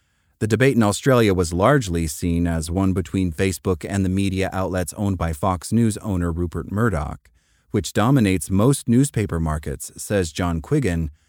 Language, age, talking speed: English, 30-49, 160 wpm